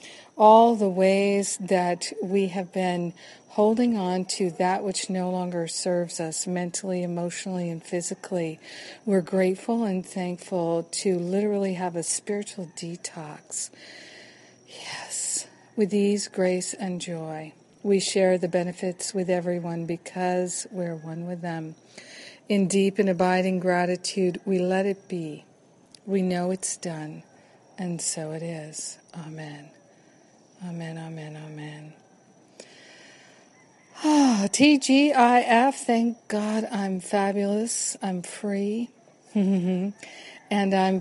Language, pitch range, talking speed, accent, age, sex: English, 180-210 Hz, 115 wpm, American, 50-69, female